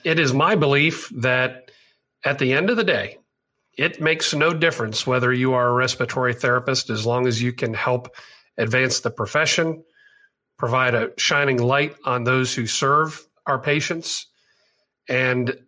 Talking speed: 155 wpm